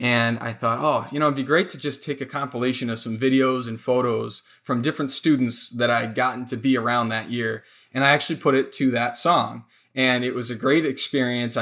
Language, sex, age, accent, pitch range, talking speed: English, male, 20-39, American, 115-140 Hz, 225 wpm